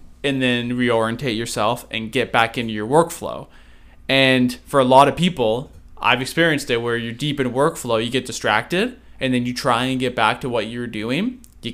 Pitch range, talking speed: 115-135 Hz, 200 wpm